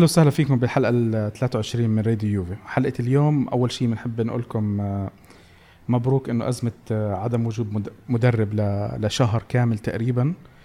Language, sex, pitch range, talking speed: Arabic, male, 110-130 Hz, 140 wpm